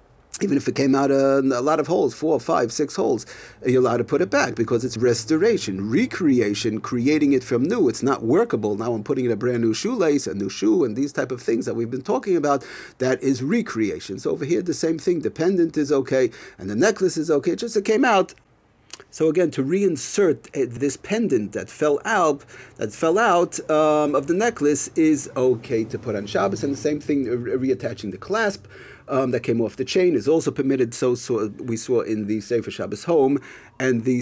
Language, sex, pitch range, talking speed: English, male, 125-155 Hz, 220 wpm